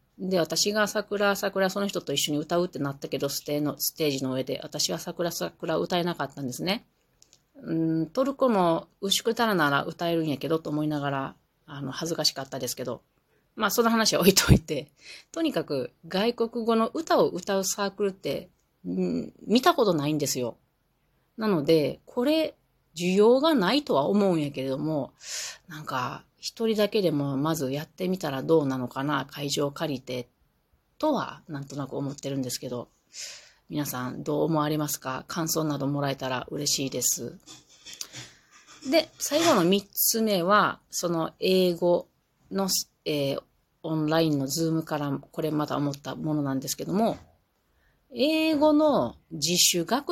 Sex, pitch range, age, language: female, 140-195 Hz, 30-49, Japanese